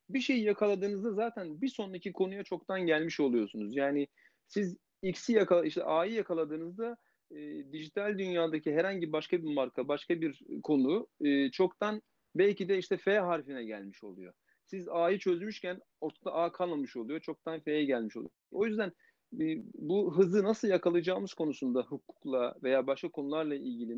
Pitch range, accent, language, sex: 145-205 Hz, native, Turkish, male